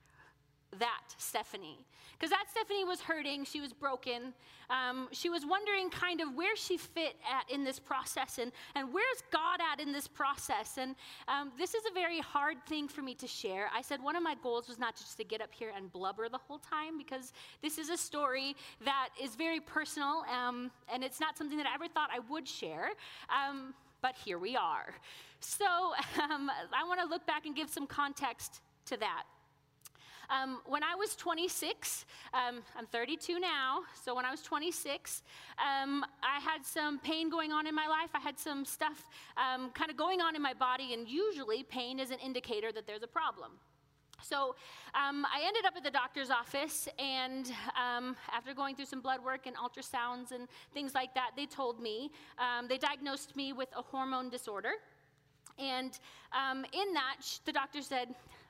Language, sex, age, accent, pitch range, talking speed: English, female, 30-49, American, 255-315 Hz, 190 wpm